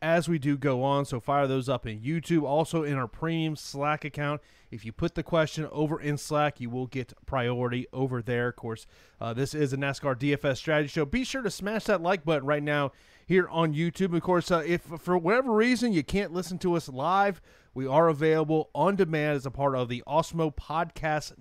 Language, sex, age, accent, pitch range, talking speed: English, male, 30-49, American, 130-160 Hz, 220 wpm